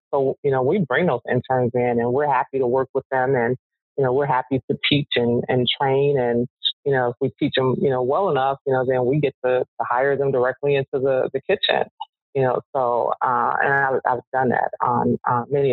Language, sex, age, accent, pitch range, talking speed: English, female, 30-49, American, 125-145 Hz, 235 wpm